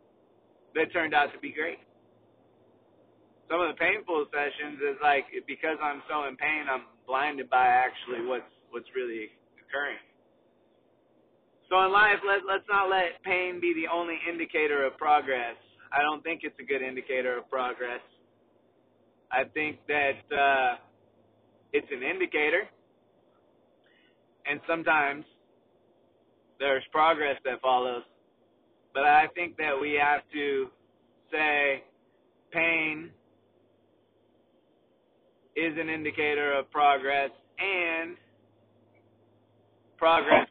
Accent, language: American, English